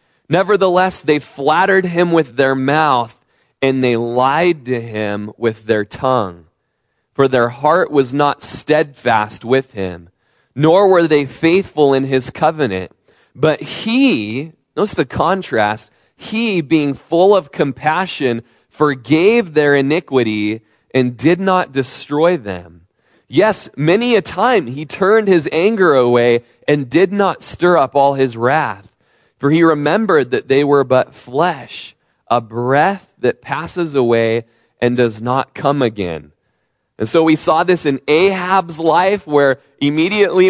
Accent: American